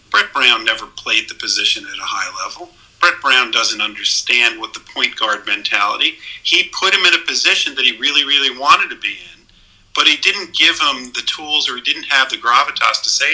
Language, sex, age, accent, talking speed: English, male, 50-69, American, 215 wpm